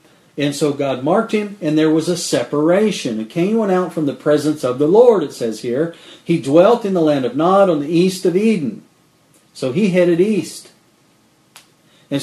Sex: male